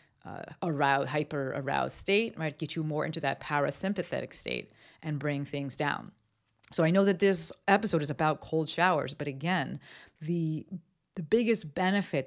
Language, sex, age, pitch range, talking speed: English, female, 30-49, 150-180 Hz, 160 wpm